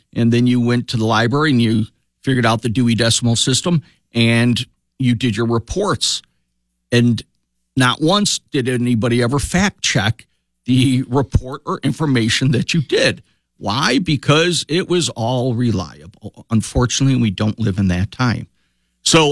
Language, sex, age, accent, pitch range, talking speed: English, male, 50-69, American, 105-135 Hz, 150 wpm